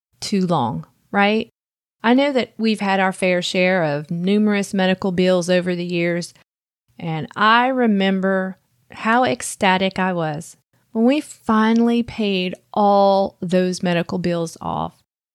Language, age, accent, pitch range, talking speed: English, 30-49, American, 180-230 Hz, 135 wpm